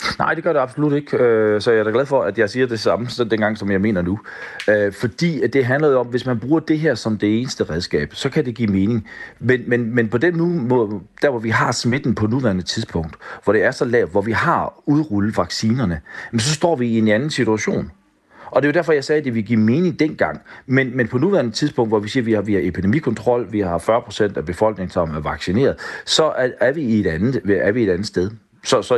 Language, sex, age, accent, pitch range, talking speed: Danish, male, 40-59, native, 95-125 Hz, 255 wpm